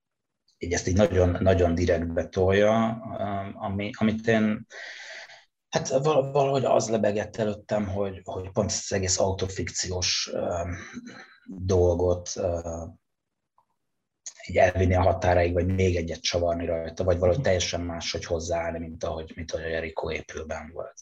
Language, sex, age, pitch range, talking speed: Hungarian, male, 30-49, 85-100 Hz, 125 wpm